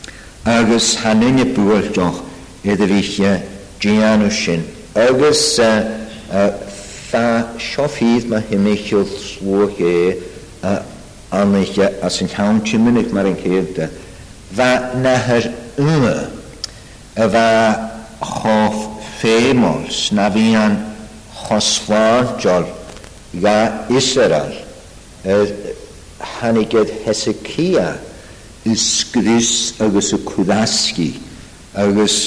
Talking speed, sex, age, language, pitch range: 35 wpm, male, 60-79, English, 95-115 Hz